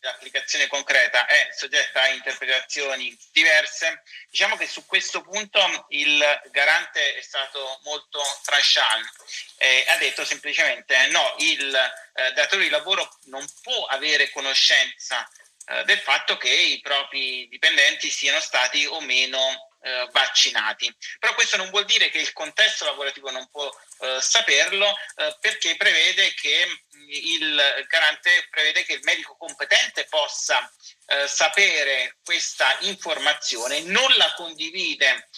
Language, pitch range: Italian, 140-205 Hz